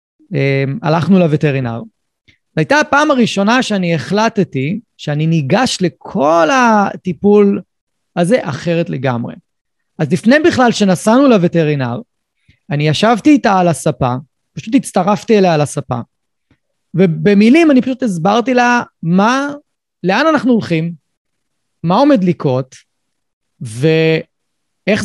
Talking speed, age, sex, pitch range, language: 100 wpm, 30-49, male, 155-225 Hz, Hebrew